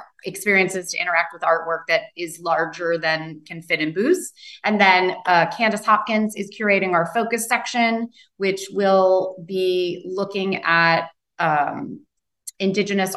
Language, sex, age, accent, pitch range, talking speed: English, female, 30-49, American, 175-205 Hz, 135 wpm